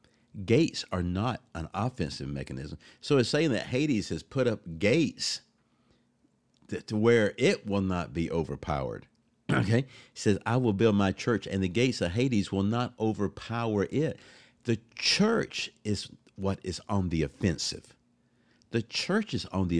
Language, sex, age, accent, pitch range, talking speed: English, male, 50-69, American, 85-125 Hz, 160 wpm